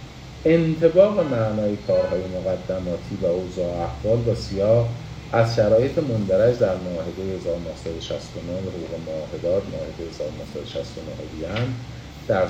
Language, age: Persian, 50-69